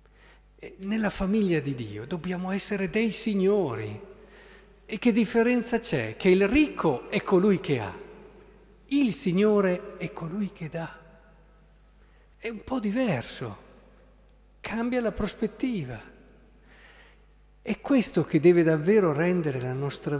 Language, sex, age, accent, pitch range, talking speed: Italian, male, 50-69, native, 135-200 Hz, 120 wpm